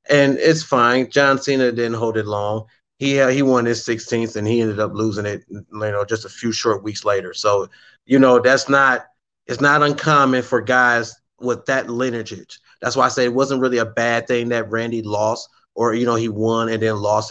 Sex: male